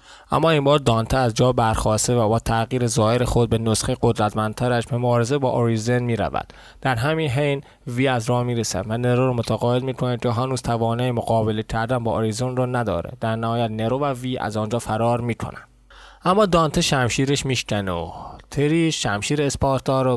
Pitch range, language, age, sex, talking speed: 115-135 Hz, Persian, 20-39, male, 185 wpm